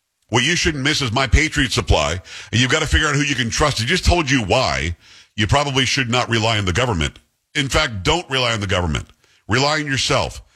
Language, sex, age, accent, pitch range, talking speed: English, male, 50-69, American, 105-140 Hz, 235 wpm